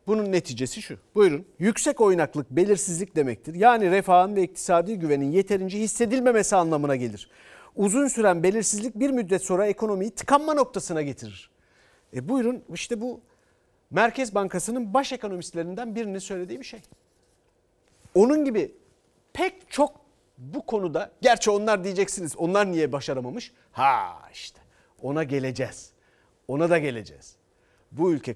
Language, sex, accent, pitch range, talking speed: Turkish, male, native, 135-215 Hz, 125 wpm